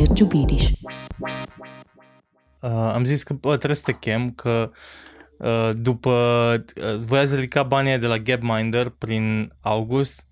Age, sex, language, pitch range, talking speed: 20-39, male, Romanian, 125-185 Hz, 120 wpm